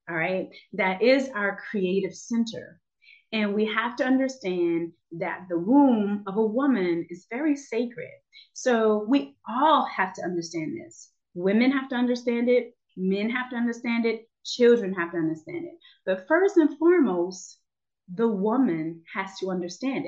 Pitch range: 185-265 Hz